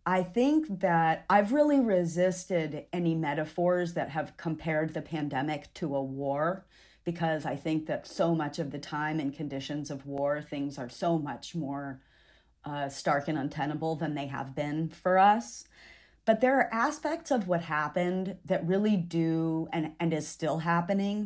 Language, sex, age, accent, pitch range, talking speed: English, female, 40-59, American, 150-185 Hz, 165 wpm